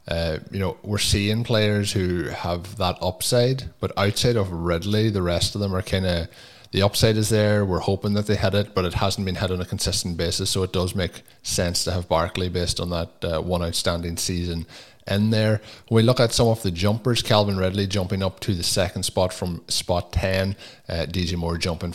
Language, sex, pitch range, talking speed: English, male, 85-105 Hz, 215 wpm